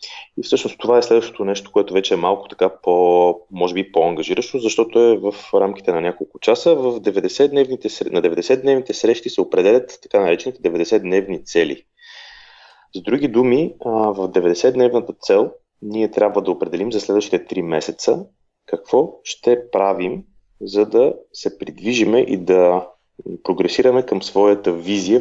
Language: Bulgarian